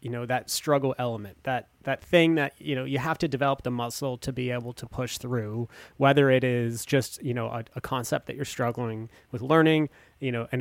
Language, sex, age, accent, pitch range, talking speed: English, male, 30-49, American, 120-145 Hz, 225 wpm